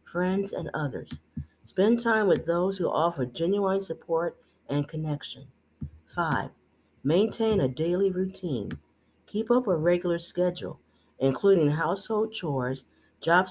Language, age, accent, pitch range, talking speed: English, 50-69, American, 130-195 Hz, 120 wpm